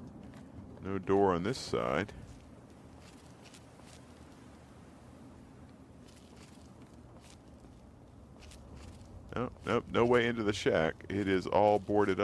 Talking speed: 90 wpm